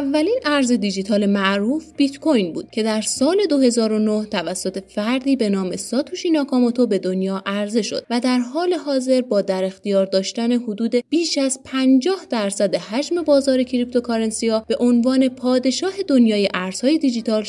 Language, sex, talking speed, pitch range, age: Persian, female, 150 wpm, 210-280 Hz, 30-49